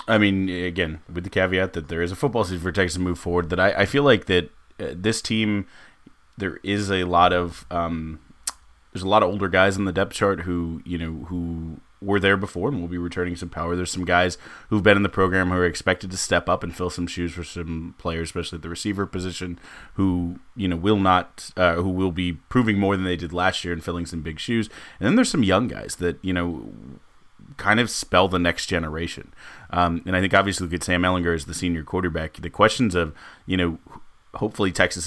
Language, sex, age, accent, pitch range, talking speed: English, male, 30-49, American, 85-95 Hz, 235 wpm